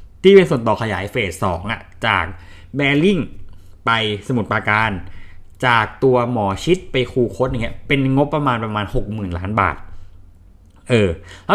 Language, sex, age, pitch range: Thai, male, 20-39, 100-155 Hz